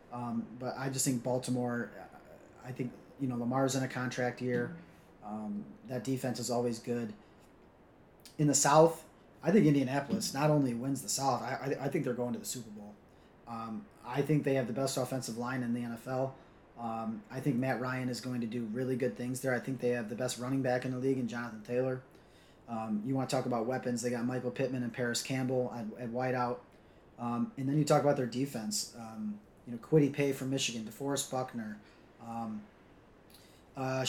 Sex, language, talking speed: male, English, 205 wpm